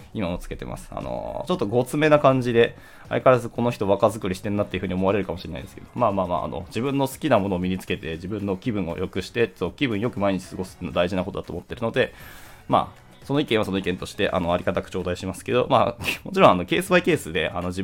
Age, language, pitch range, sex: 20-39, Japanese, 95-120 Hz, male